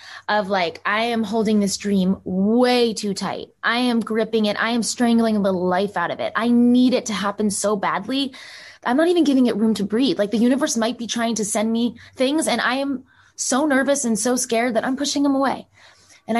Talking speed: 225 wpm